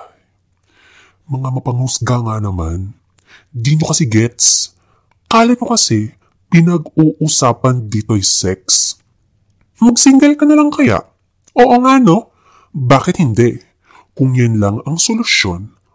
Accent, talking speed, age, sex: Filipino, 105 wpm, 20-39, female